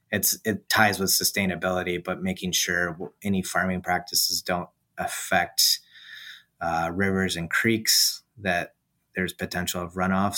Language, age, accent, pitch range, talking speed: English, 30-49, American, 90-95 Hz, 120 wpm